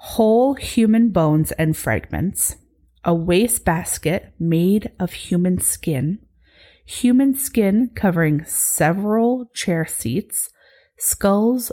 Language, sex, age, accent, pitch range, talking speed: English, female, 30-49, American, 155-220 Hz, 90 wpm